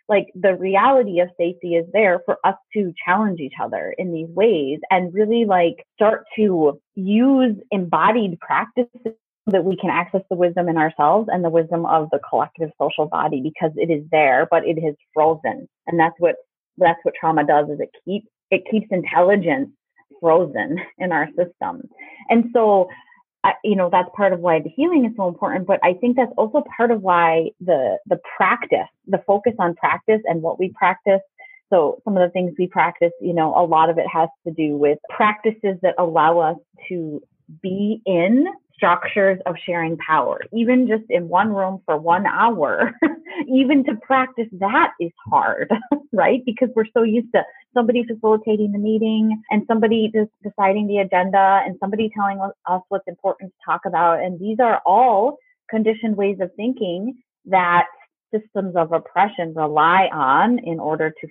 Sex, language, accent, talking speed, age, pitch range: female, English, American, 180 wpm, 30-49, 170-220 Hz